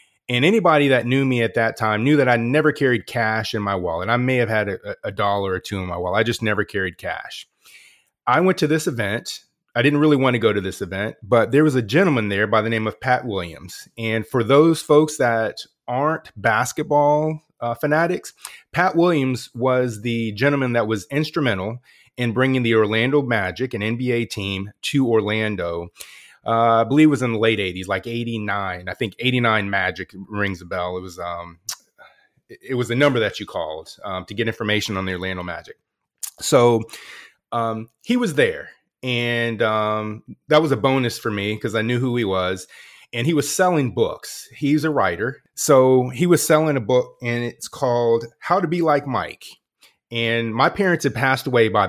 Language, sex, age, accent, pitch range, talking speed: English, male, 30-49, American, 105-135 Hz, 200 wpm